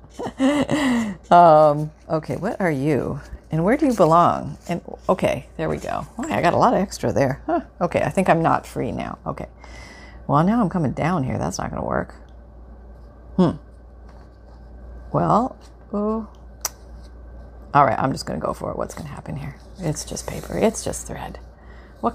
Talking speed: 180 wpm